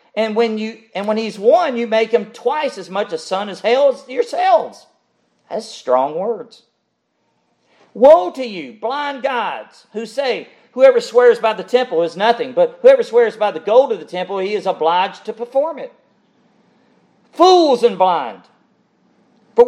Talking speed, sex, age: 160 wpm, male, 40-59